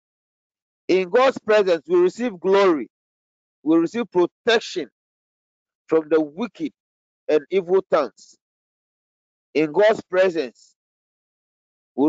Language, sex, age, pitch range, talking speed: English, male, 40-59, 150-200 Hz, 95 wpm